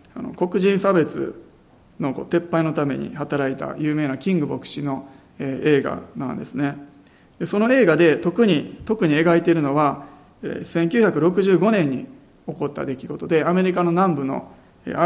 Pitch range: 140-180 Hz